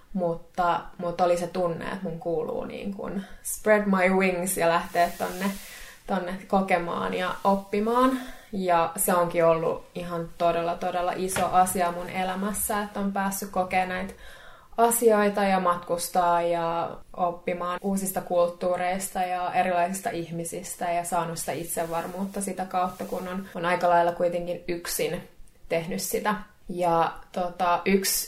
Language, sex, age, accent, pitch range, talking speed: Finnish, female, 20-39, native, 170-190 Hz, 130 wpm